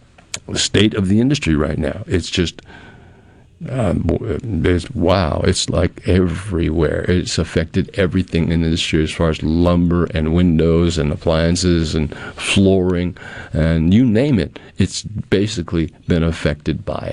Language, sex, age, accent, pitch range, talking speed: English, male, 50-69, American, 80-105 Hz, 140 wpm